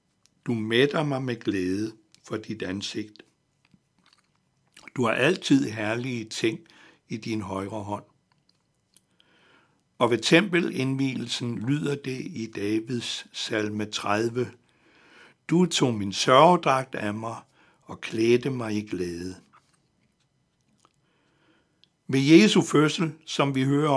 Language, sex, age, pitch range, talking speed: Danish, male, 60-79, 110-145 Hz, 110 wpm